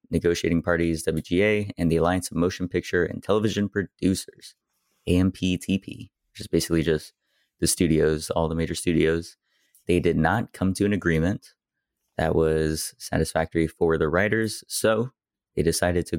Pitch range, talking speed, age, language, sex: 80-95 Hz, 150 wpm, 30-49, English, male